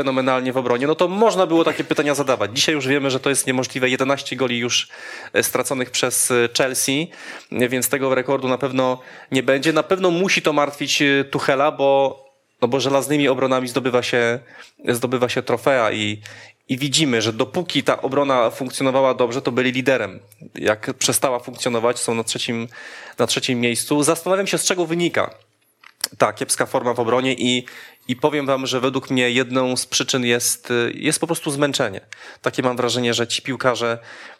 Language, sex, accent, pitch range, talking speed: Polish, male, native, 120-145 Hz, 165 wpm